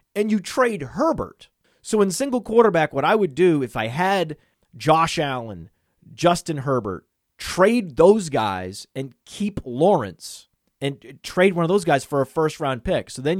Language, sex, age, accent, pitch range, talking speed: English, male, 30-49, American, 125-165 Hz, 165 wpm